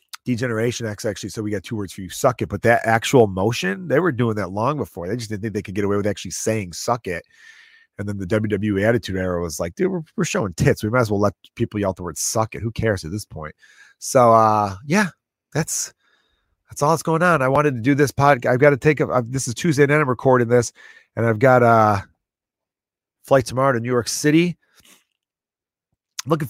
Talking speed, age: 240 wpm, 30-49